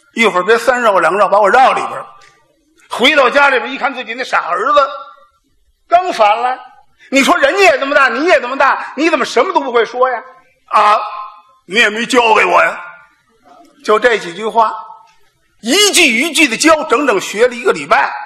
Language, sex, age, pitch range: Chinese, male, 50-69, 210-315 Hz